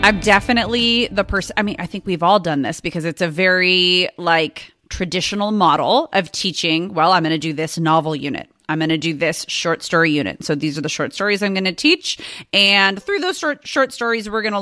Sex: female